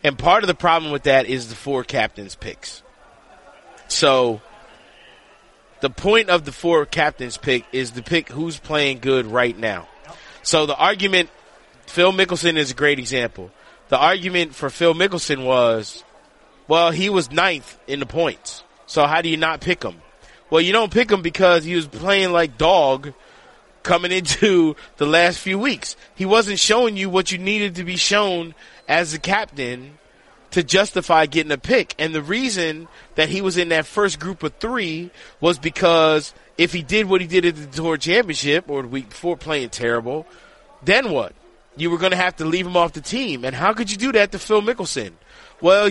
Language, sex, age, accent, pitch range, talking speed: English, male, 30-49, American, 145-190 Hz, 190 wpm